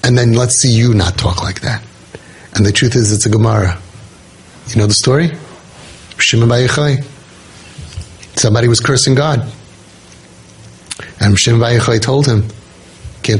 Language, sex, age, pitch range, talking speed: English, male, 30-49, 105-140 Hz, 130 wpm